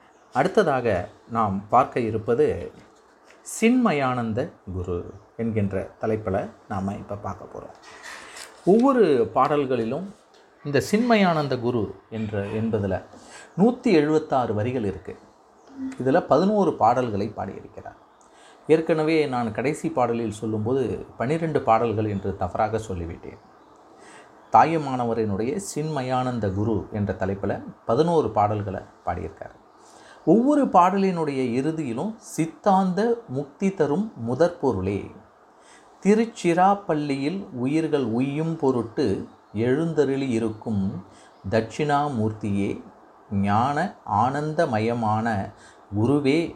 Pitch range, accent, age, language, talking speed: 105-160 Hz, native, 30-49, Tamil, 80 wpm